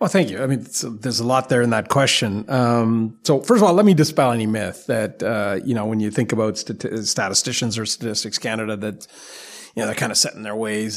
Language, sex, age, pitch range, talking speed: English, male, 40-59, 120-150 Hz, 250 wpm